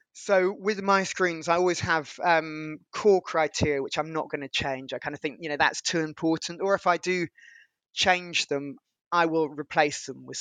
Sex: male